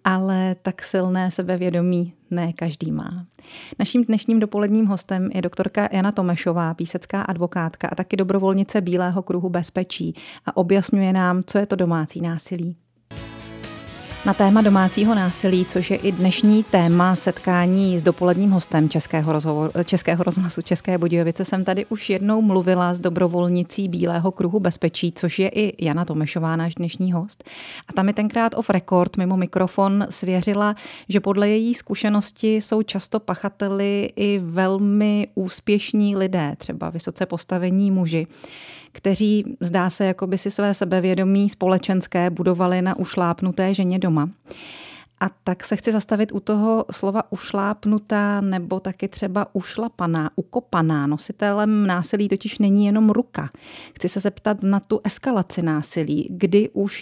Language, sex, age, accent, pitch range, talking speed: Czech, female, 30-49, native, 175-205 Hz, 140 wpm